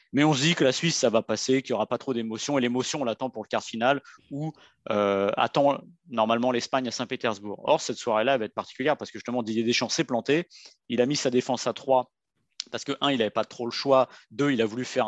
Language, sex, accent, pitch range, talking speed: French, male, French, 110-135 Hz, 265 wpm